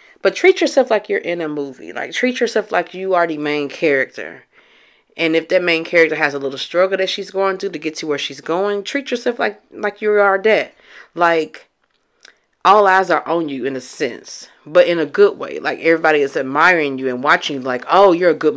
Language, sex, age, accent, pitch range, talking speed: English, female, 30-49, American, 155-210 Hz, 225 wpm